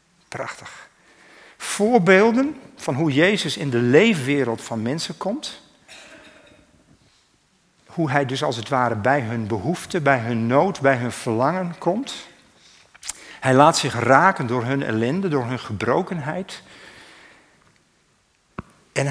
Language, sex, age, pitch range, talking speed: Dutch, male, 60-79, 120-170 Hz, 120 wpm